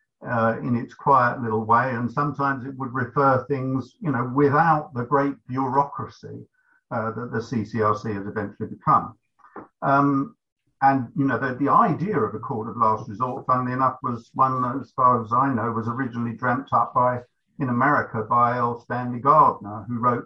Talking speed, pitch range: 180 wpm, 115-140 Hz